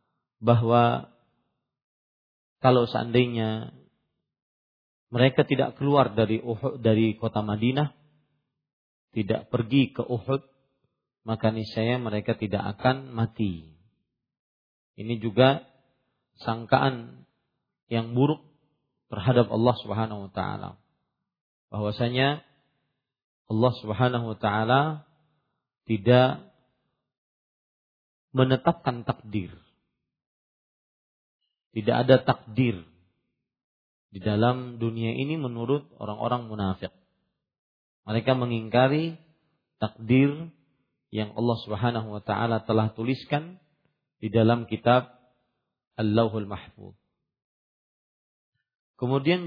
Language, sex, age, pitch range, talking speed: Malay, male, 40-59, 110-135 Hz, 70 wpm